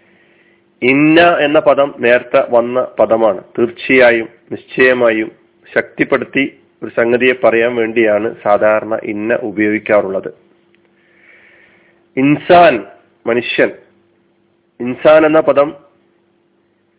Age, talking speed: 40-59, 70 wpm